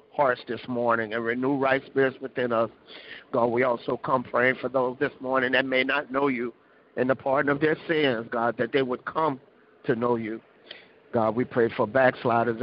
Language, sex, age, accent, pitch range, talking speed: English, male, 50-69, American, 125-140 Hz, 200 wpm